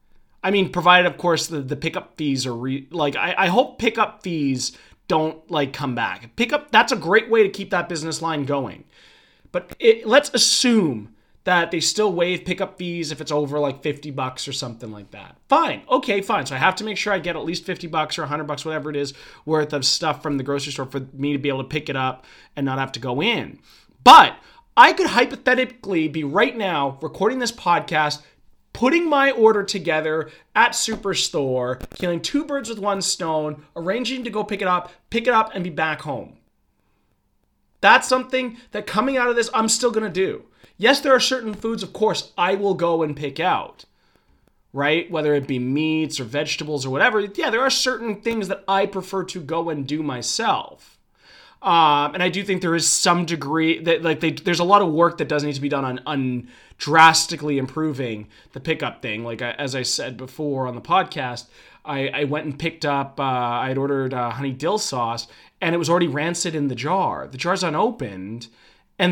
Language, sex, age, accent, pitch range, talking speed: English, male, 30-49, American, 145-195 Hz, 210 wpm